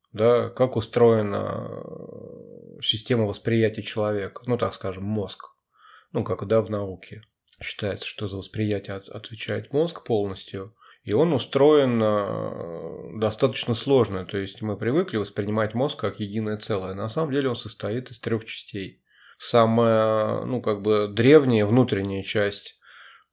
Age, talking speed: 30-49, 135 wpm